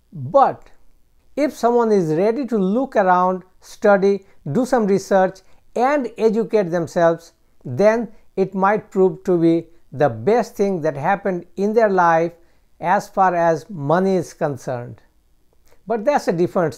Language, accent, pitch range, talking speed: English, Indian, 170-215 Hz, 140 wpm